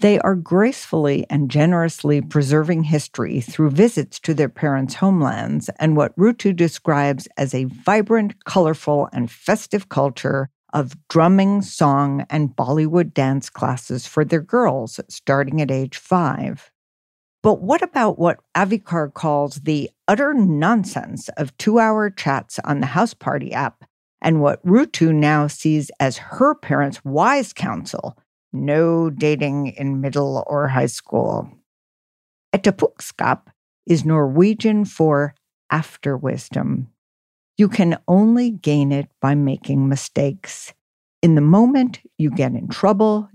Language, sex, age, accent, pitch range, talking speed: English, female, 50-69, American, 140-190 Hz, 125 wpm